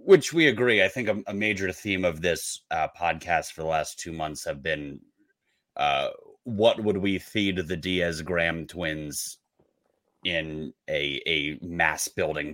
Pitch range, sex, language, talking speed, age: 85-110 Hz, male, English, 155 wpm, 30-49